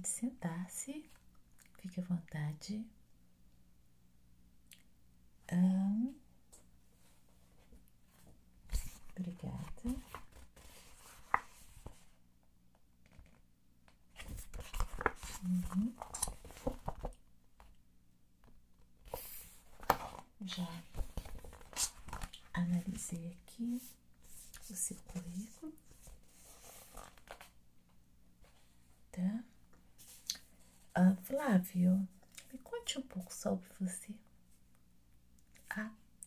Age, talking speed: 50-69, 40 wpm